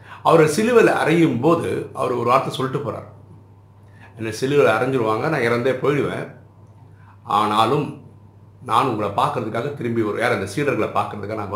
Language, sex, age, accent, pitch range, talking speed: Tamil, male, 50-69, native, 100-130 Hz, 130 wpm